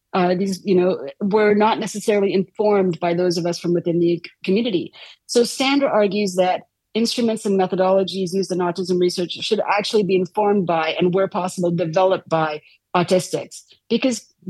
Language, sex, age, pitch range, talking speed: English, female, 40-59, 180-215 Hz, 160 wpm